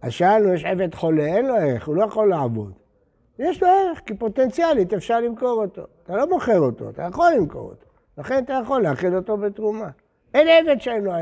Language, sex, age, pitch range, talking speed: Hebrew, male, 60-79, 145-220 Hz, 205 wpm